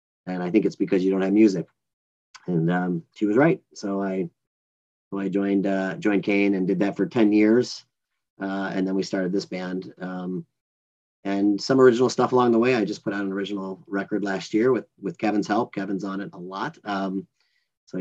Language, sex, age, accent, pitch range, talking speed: English, male, 30-49, American, 95-115 Hz, 210 wpm